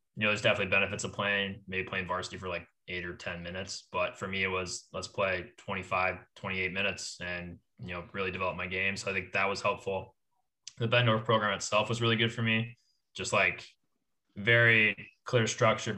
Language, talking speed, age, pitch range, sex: English, 200 wpm, 20-39, 95-115 Hz, male